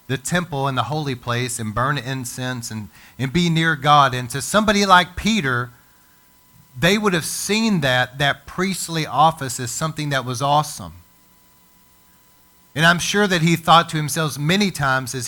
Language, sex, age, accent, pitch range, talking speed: English, male, 40-59, American, 125-170 Hz, 170 wpm